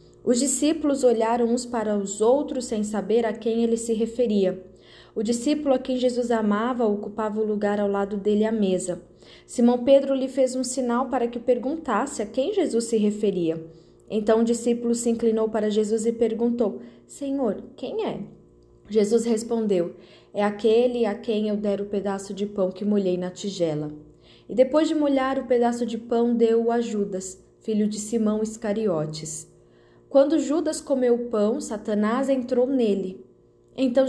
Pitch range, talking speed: 205-255 Hz, 165 wpm